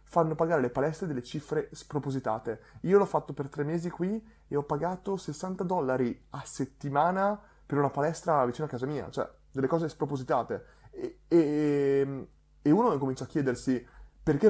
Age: 30-49